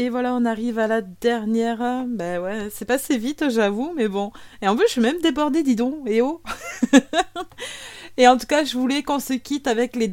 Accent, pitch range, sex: French, 185-235 Hz, female